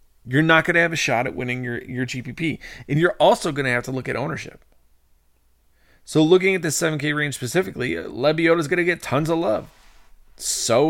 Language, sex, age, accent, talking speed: English, male, 30-49, American, 205 wpm